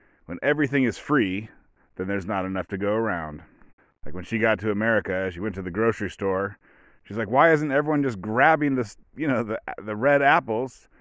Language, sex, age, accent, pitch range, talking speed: English, male, 30-49, American, 100-125 Hz, 200 wpm